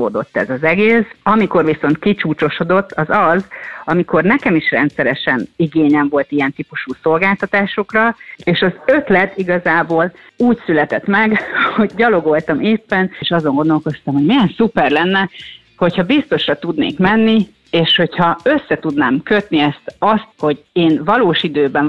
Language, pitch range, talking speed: Hungarian, 155-205 Hz, 135 wpm